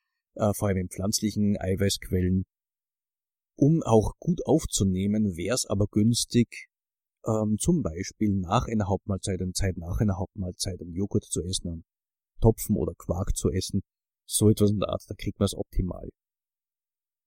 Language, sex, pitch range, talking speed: German, male, 100-120 Hz, 155 wpm